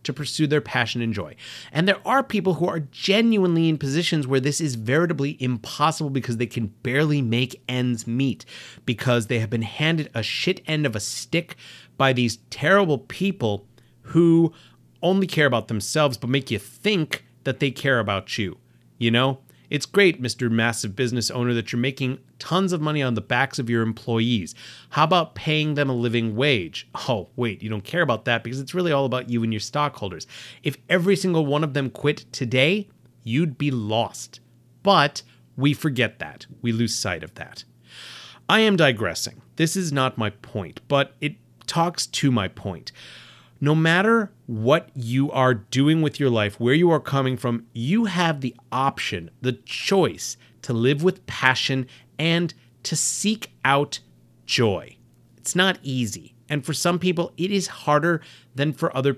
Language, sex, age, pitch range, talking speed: English, male, 30-49, 120-160 Hz, 175 wpm